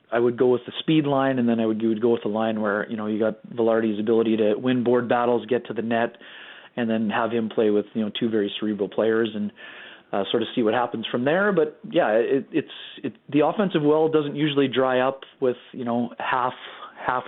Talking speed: 245 wpm